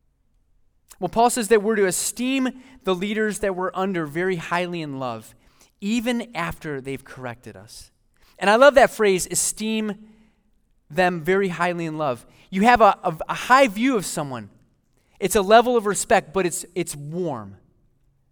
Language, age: English, 20-39